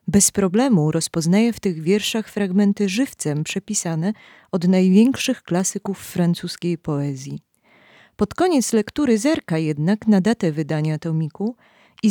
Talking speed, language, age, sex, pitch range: 120 wpm, Polish, 30-49, female, 155-230 Hz